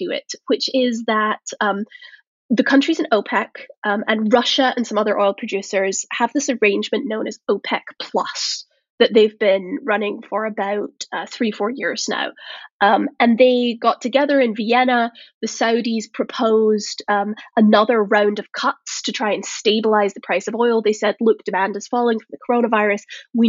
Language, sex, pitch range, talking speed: English, female, 210-245 Hz, 175 wpm